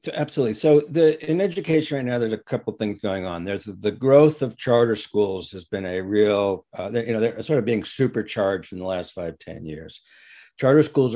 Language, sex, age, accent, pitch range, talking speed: English, male, 60-79, American, 105-135 Hz, 215 wpm